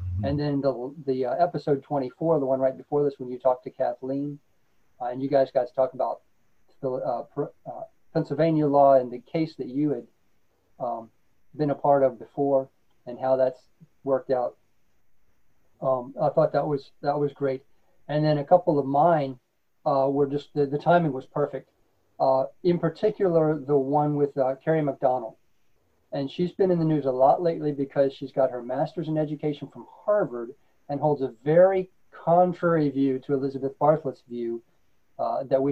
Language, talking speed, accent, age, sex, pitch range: English, 185 wpm, American, 40-59, male, 130-150 Hz